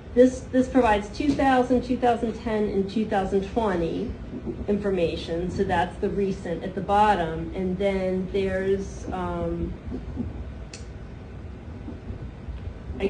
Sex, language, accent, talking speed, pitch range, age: female, English, American, 90 wpm, 165-220 Hz, 40-59